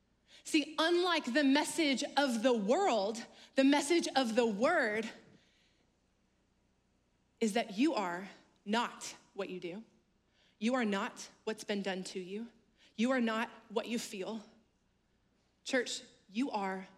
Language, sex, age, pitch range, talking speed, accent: English, female, 30-49, 200-260 Hz, 130 wpm, American